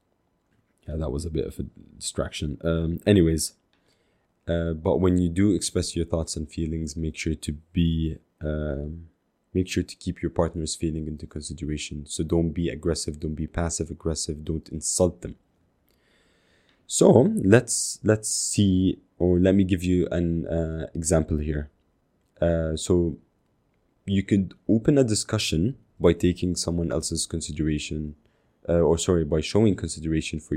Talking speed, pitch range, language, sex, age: 150 wpm, 80-90 Hz, English, male, 20-39